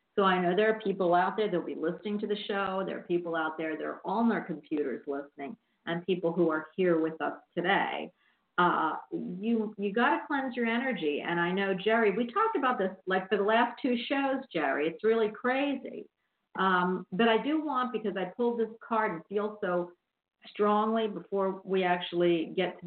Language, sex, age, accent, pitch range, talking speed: English, female, 50-69, American, 170-220 Hz, 205 wpm